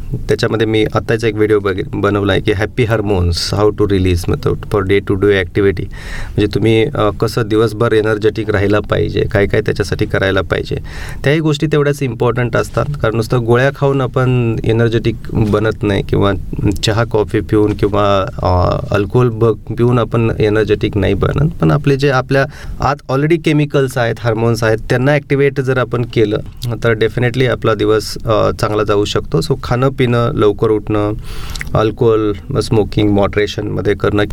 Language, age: Marathi, 30-49